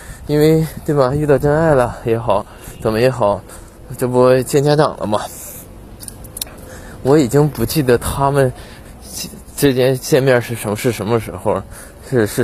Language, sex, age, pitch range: Chinese, male, 20-39, 105-130 Hz